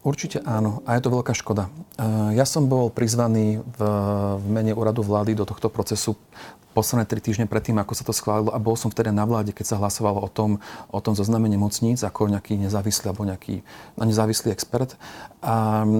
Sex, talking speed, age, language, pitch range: male, 185 wpm, 40-59, Slovak, 105-125 Hz